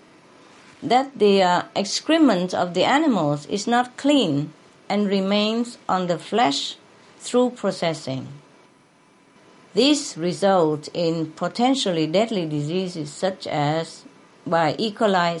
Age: 50-69